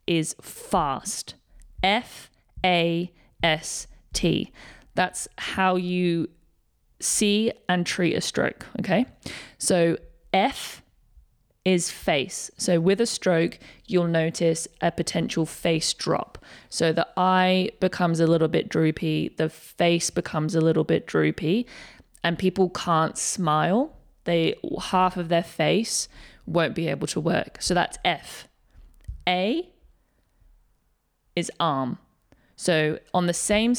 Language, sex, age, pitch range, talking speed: English, female, 20-39, 165-185 Hz, 120 wpm